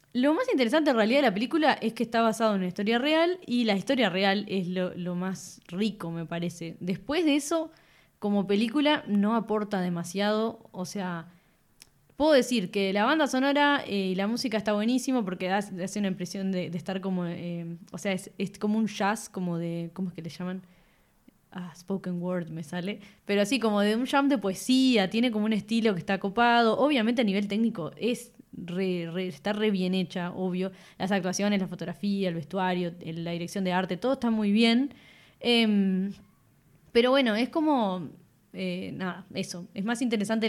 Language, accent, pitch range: Spanish, Argentinian, 185-230 Hz